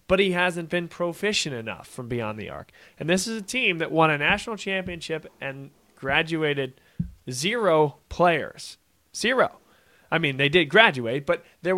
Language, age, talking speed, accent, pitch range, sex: English, 20-39, 165 wpm, American, 135-180 Hz, male